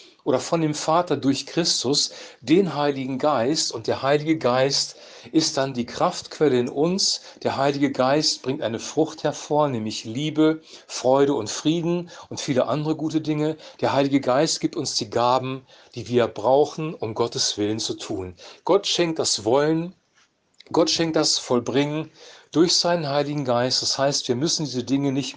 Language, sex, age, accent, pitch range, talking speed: German, male, 40-59, German, 125-155 Hz, 165 wpm